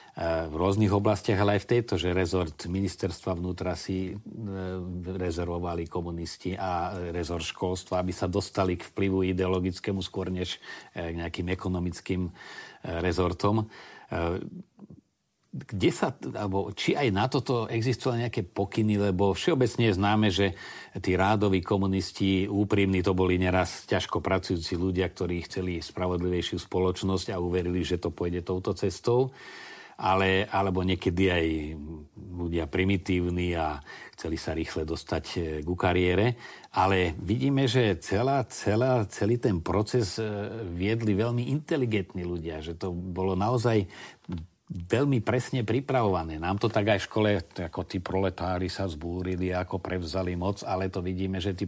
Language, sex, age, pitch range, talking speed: Slovak, male, 40-59, 90-105 Hz, 130 wpm